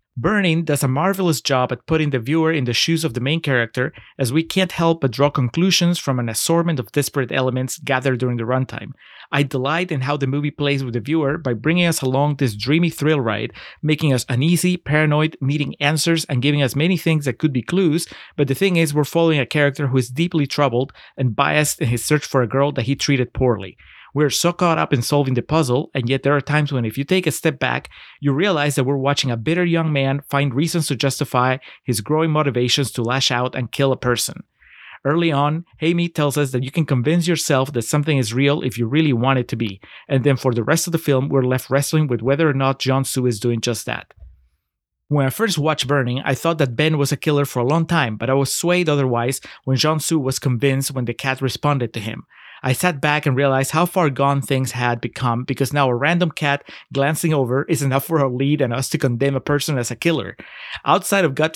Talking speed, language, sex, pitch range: 235 wpm, English, male, 130-155 Hz